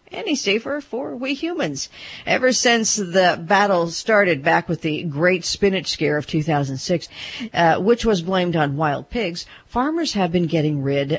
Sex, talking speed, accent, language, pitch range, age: female, 160 wpm, American, English, 155-215 Hz, 50-69